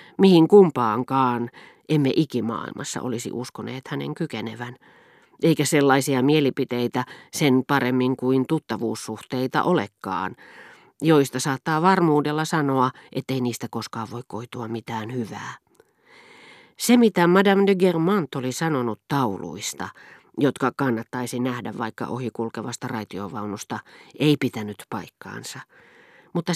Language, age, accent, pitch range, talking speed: Finnish, 40-59, native, 120-155 Hz, 100 wpm